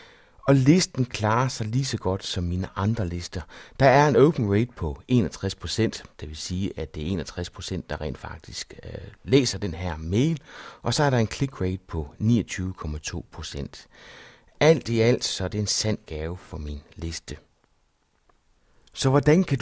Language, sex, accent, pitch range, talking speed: Danish, male, native, 85-130 Hz, 175 wpm